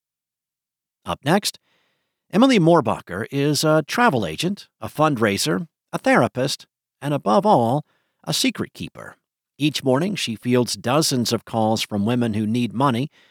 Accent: American